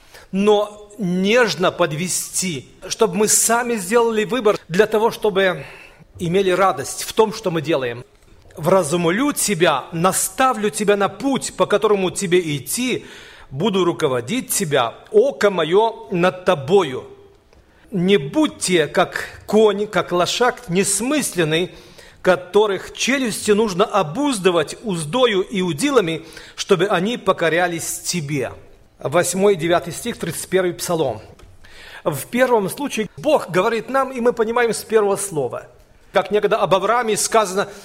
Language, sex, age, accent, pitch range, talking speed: Russian, male, 40-59, native, 175-220 Hz, 120 wpm